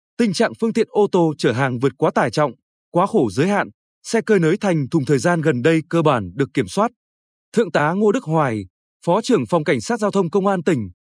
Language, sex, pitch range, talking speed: Vietnamese, male, 155-205 Hz, 245 wpm